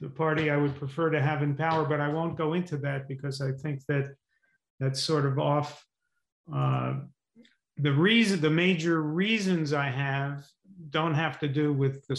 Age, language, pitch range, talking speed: 50-69, English, 140-165 Hz, 180 wpm